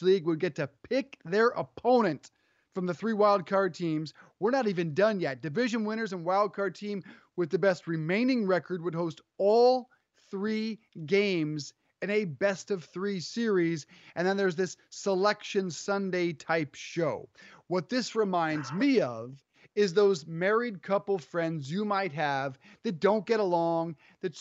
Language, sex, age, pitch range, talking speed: English, male, 30-49, 175-220 Hz, 155 wpm